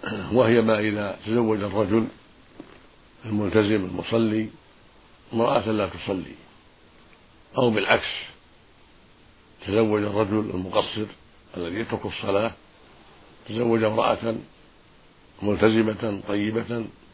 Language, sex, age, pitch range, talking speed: Arabic, male, 60-79, 100-115 Hz, 75 wpm